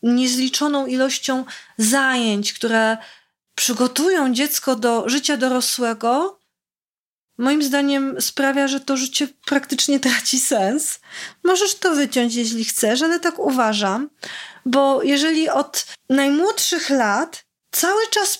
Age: 30-49